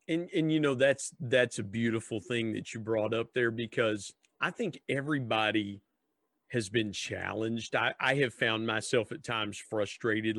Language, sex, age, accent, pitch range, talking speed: English, male, 40-59, American, 110-130 Hz, 170 wpm